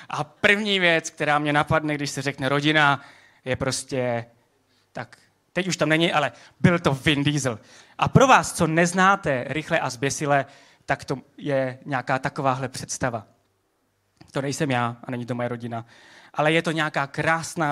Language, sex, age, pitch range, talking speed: Czech, male, 20-39, 125-160 Hz, 165 wpm